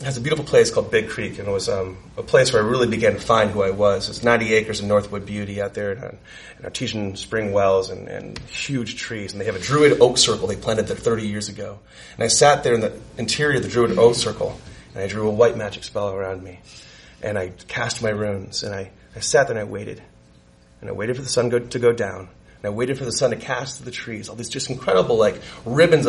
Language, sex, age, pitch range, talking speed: English, male, 30-49, 95-135 Hz, 260 wpm